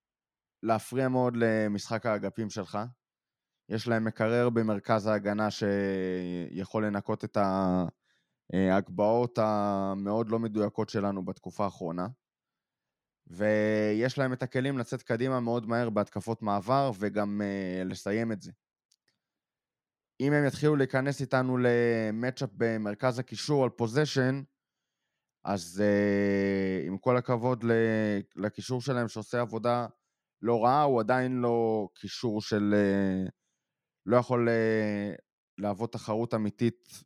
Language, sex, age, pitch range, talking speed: Hebrew, male, 20-39, 100-120 Hz, 105 wpm